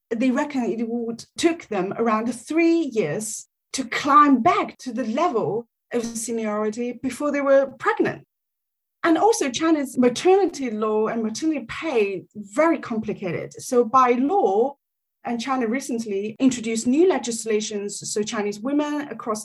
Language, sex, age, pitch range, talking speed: English, female, 30-49, 220-290 Hz, 135 wpm